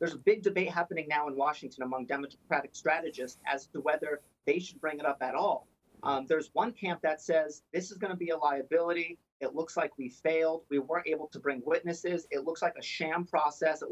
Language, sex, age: English, male, 40-59